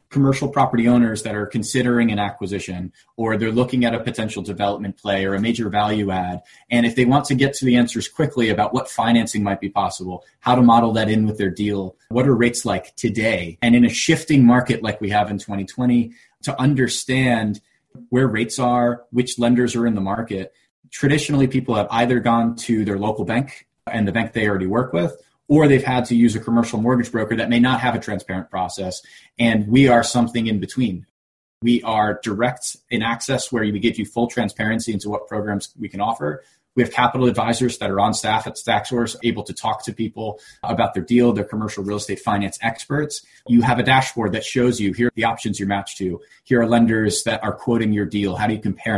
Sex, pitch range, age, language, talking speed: male, 105-120 Hz, 20-39, English, 215 wpm